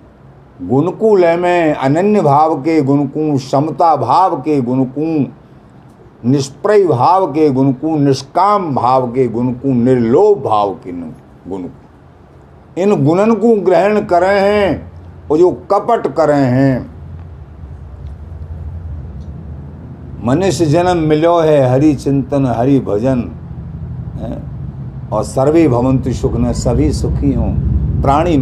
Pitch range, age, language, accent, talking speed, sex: 110-165 Hz, 50-69, Hindi, native, 105 wpm, male